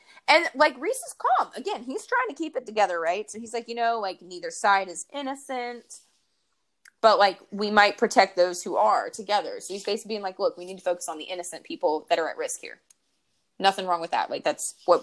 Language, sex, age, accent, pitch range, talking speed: English, female, 20-39, American, 175-225 Hz, 230 wpm